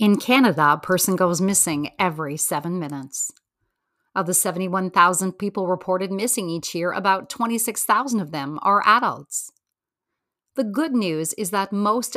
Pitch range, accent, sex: 170-215 Hz, American, female